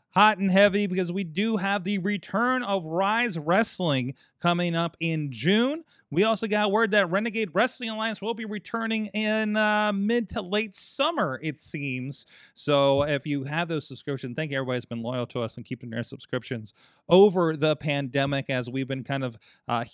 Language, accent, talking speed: English, American, 185 wpm